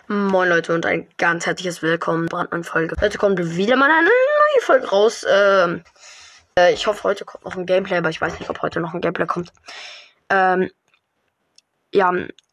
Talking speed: 180 wpm